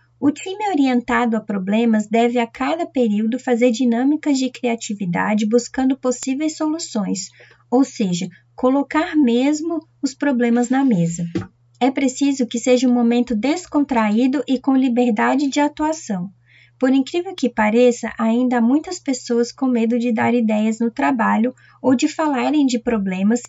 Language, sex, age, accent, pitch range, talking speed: Portuguese, female, 20-39, Brazilian, 225-270 Hz, 145 wpm